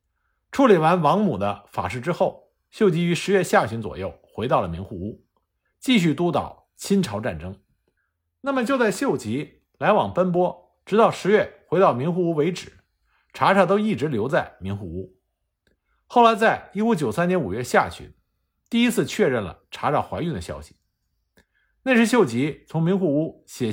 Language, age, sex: Chinese, 50-69, male